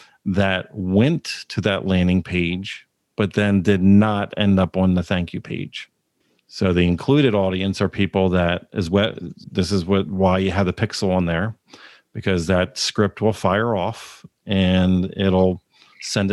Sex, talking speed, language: male, 165 wpm, English